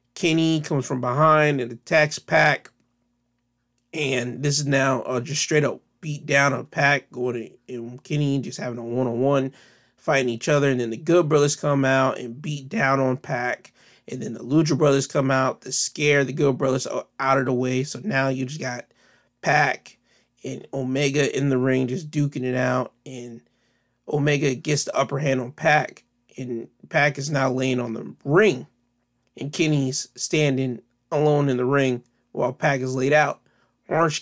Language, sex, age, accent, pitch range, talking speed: English, male, 30-49, American, 125-150 Hz, 175 wpm